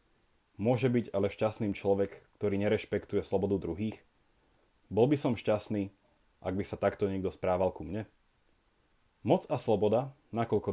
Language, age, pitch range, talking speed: Slovak, 30-49, 100-130 Hz, 140 wpm